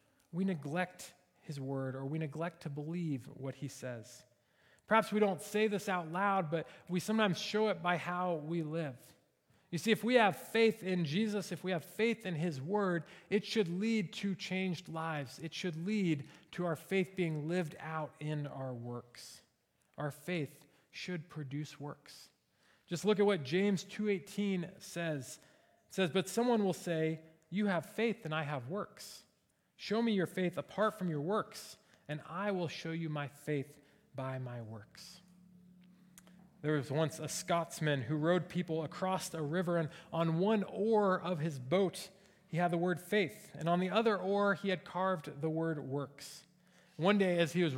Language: English